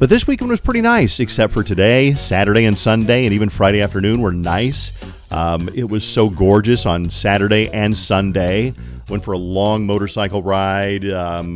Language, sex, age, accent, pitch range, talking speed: English, male, 40-59, American, 95-115 Hz, 175 wpm